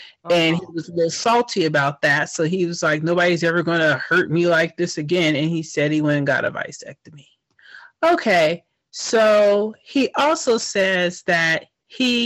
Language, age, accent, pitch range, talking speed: English, 30-49, American, 165-225 Hz, 180 wpm